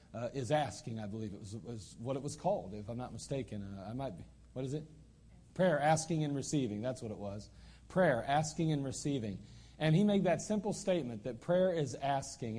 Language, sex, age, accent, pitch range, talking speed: English, male, 40-59, American, 130-165 Hz, 215 wpm